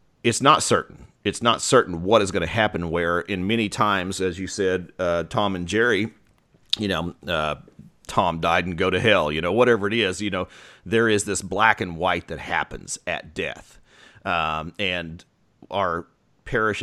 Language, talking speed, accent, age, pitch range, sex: English, 185 wpm, American, 40-59, 85-105 Hz, male